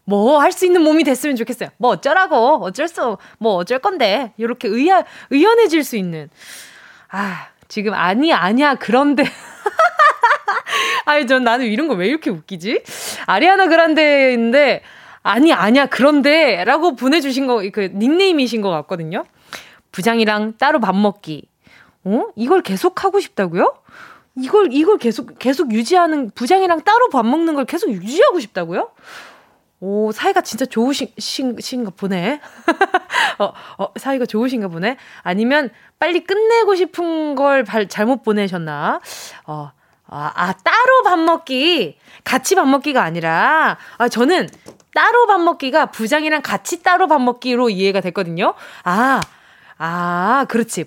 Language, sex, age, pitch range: Korean, female, 20-39, 215-320 Hz